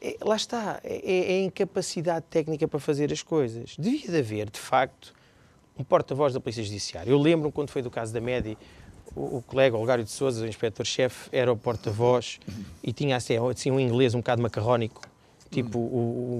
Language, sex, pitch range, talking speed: Portuguese, male, 115-150 Hz, 195 wpm